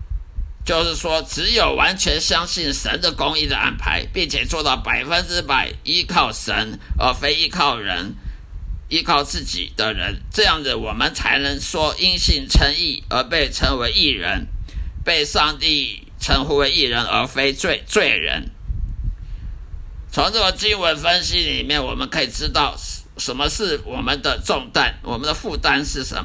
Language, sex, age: Chinese, male, 50-69